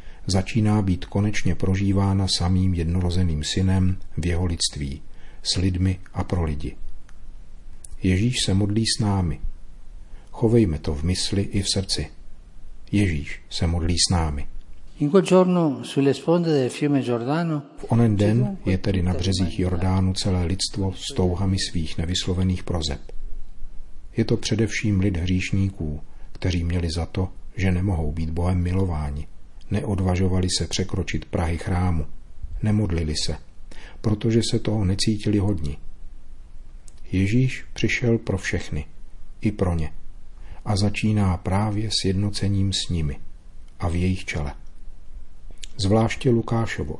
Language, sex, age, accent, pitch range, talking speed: Czech, male, 50-69, native, 80-100 Hz, 120 wpm